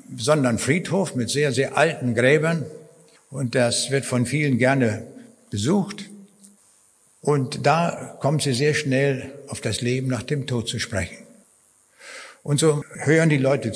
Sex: male